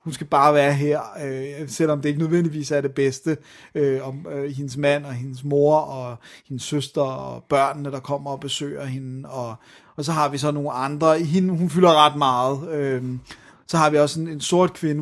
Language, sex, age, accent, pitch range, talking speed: Danish, male, 30-49, native, 135-155 Hz, 190 wpm